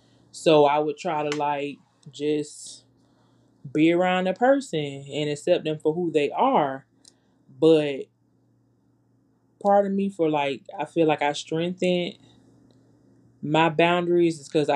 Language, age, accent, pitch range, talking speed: English, 20-39, American, 140-160 Hz, 135 wpm